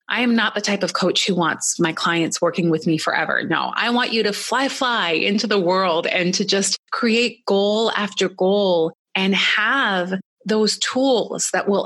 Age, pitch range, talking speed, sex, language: 30-49, 185-230 Hz, 190 wpm, female, English